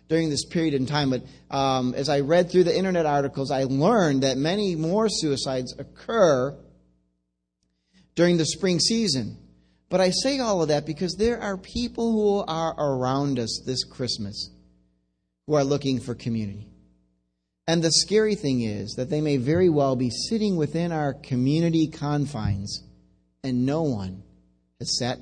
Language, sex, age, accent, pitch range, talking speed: English, male, 40-59, American, 105-160 Hz, 160 wpm